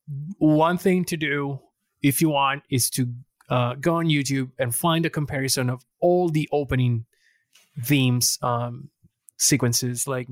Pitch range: 130-155 Hz